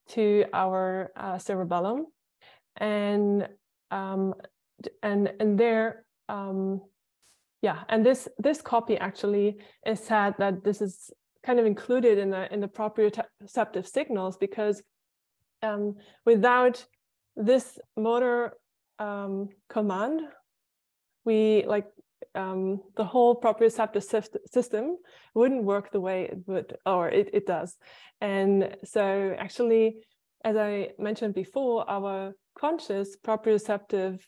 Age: 20-39